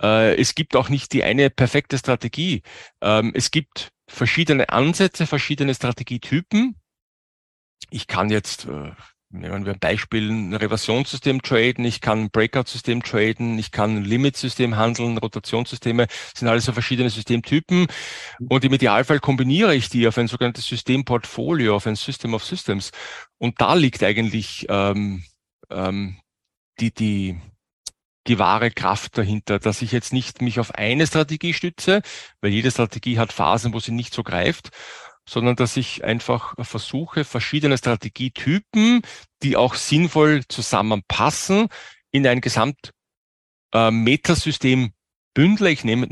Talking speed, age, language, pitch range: 135 wpm, 40-59, German, 110-135 Hz